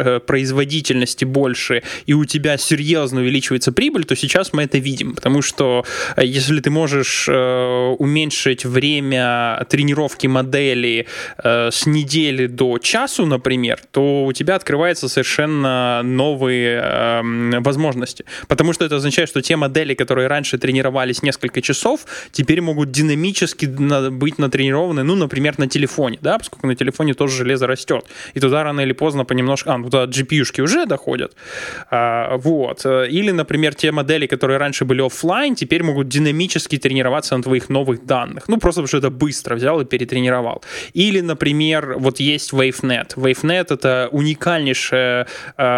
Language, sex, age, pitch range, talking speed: Russian, male, 20-39, 130-150 Hz, 140 wpm